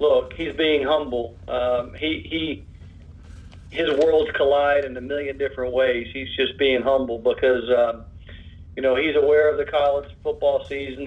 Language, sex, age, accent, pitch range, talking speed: English, male, 50-69, American, 115-145 Hz, 165 wpm